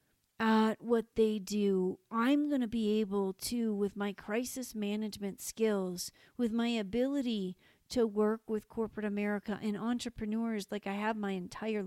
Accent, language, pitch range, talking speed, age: American, English, 200-235 Hz, 145 wpm, 50-69